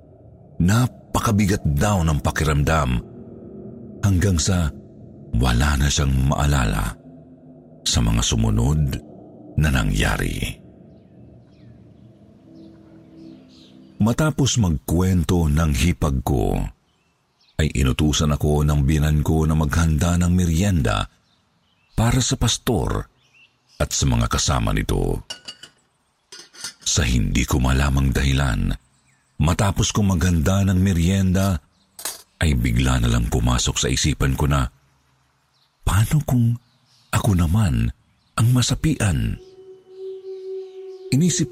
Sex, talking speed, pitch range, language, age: male, 90 wpm, 75-120 Hz, Filipino, 50-69